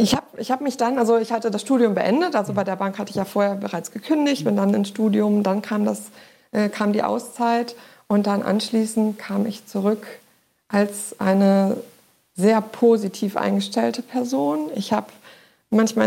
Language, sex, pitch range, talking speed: German, female, 195-230 Hz, 170 wpm